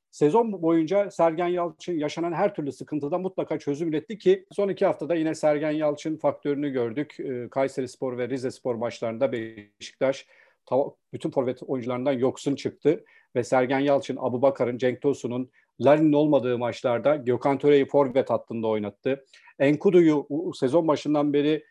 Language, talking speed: Turkish, 140 wpm